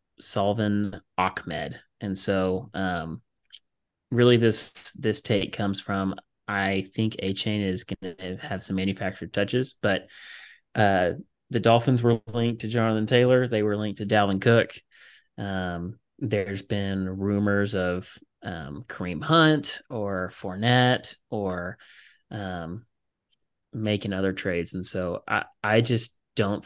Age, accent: 30-49, American